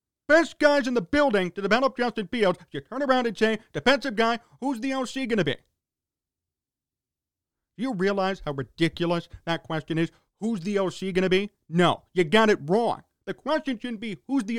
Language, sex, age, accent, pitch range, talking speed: English, male, 40-59, American, 140-235 Hz, 195 wpm